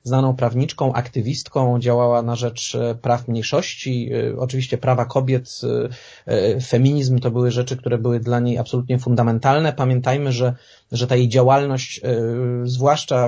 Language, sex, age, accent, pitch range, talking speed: Polish, male, 30-49, native, 120-135 Hz, 125 wpm